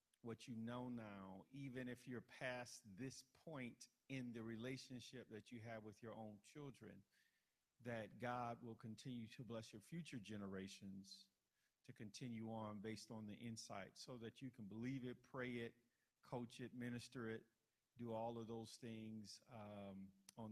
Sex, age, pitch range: male, 50-69, 110-130 Hz